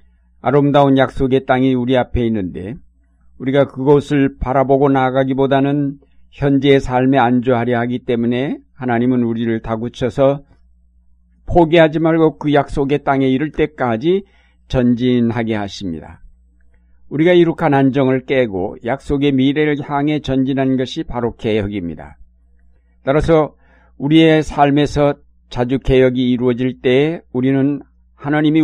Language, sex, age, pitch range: Korean, male, 60-79, 105-140 Hz